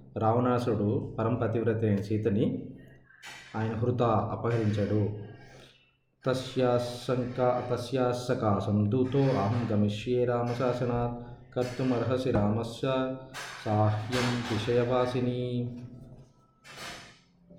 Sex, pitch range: male, 105-125 Hz